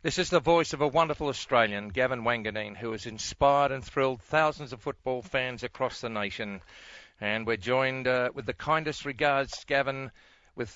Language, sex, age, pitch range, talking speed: English, male, 50-69, 110-135 Hz, 180 wpm